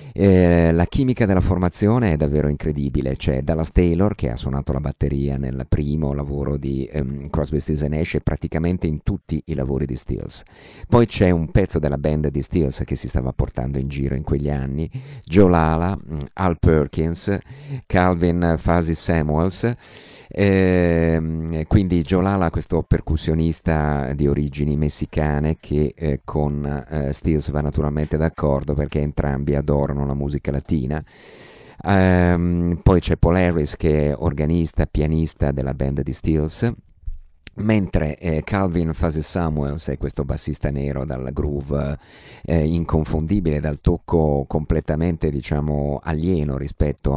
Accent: native